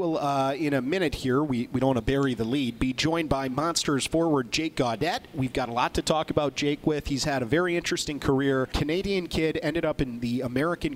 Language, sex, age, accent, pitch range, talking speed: English, male, 40-59, American, 125-155 Hz, 230 wpm